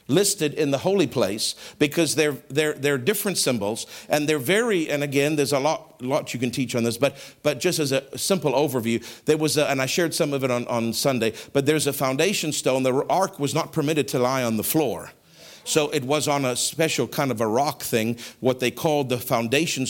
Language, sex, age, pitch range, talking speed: English, male, 50-69, 145-220 Hz, 225 wpm